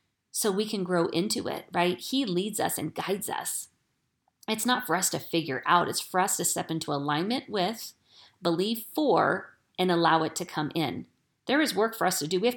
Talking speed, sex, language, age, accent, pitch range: 215 wpm, female, English, 40-59, American, 155-185 Hz